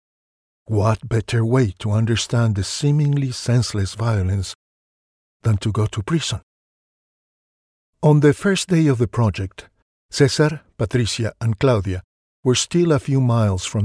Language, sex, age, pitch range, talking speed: English, male, 50-69, 100-125 Hz, 135 wpm